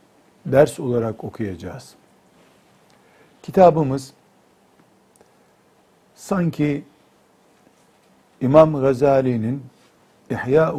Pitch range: 120-145 Hz